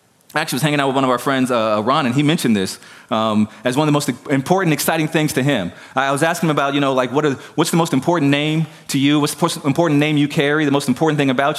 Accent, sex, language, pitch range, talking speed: American, male, English, 115-155 Hz, 290 wpm